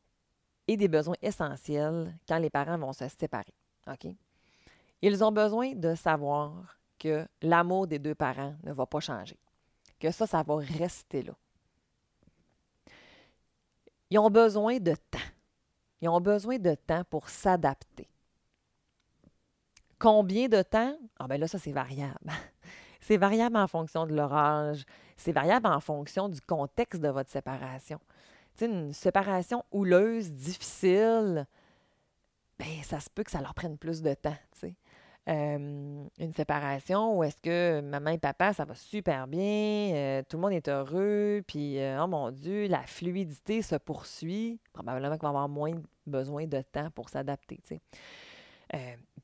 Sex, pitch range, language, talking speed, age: female, 145-195 Hz, French, 155 wpm, 30-49